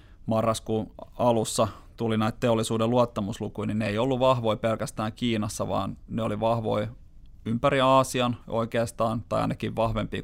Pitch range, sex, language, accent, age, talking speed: 100-115 Hz, male, Finnish, native, 30-49, 135 wpm